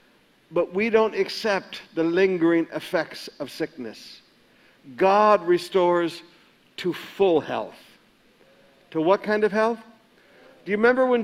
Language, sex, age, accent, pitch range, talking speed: English, male, 60-79, American, 180-235 Hz, 125 wpm